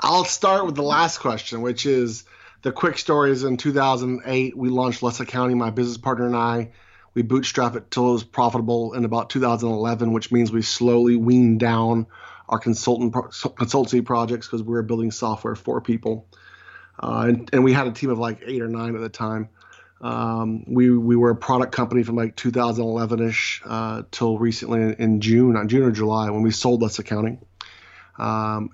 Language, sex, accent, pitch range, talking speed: English, male, American, 115-125 Hz, 210 wpm